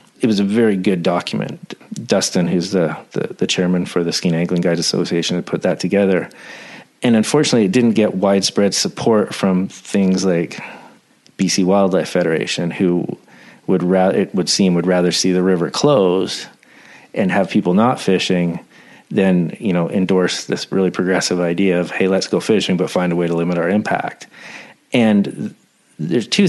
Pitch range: 90-100 Hz